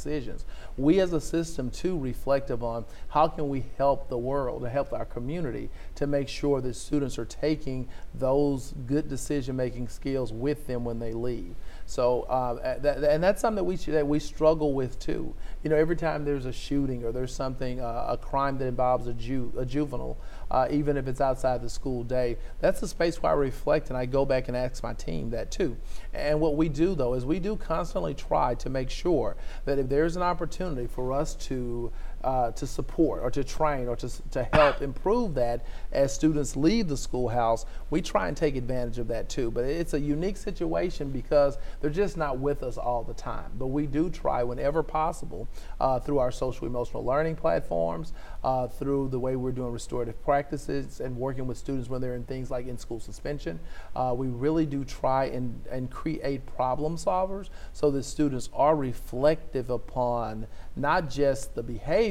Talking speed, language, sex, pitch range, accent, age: 195 wpm, English, male, 125-150 Hz, American, 40-59